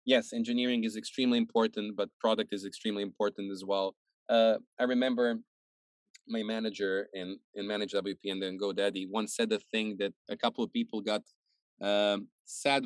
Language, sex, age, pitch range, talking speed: English, male, 20-39, 100-120 Hz, 175 wpm